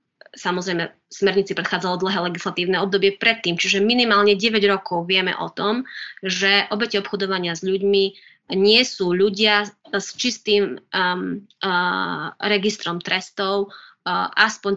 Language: Slovak